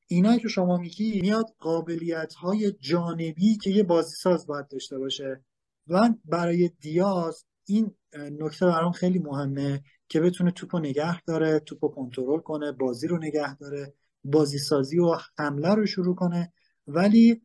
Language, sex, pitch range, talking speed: Persian, male, 135-165 Hz, 150 wpm